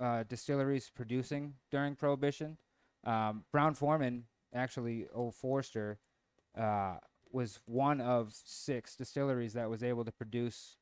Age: 20-39